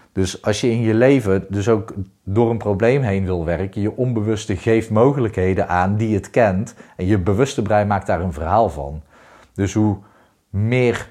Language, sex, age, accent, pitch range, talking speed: Dutch, male, 40-59, Dutch, 85-105 Hz, 185 wpm